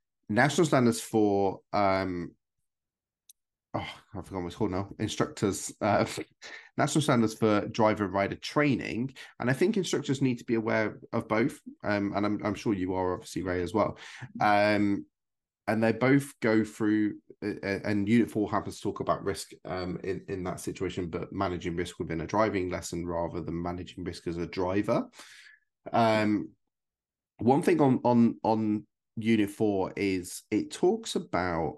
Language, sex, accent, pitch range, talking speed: English, male, British, 90-115 Hz, 160 wpm